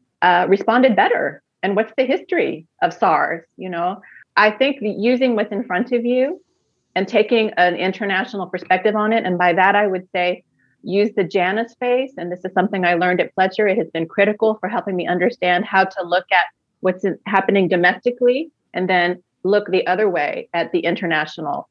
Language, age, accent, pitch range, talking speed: English, 30-49, American, 175-220 Hz, 190 wpm